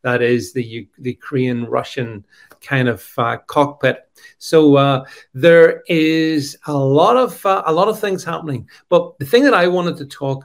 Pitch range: 135-170 Hz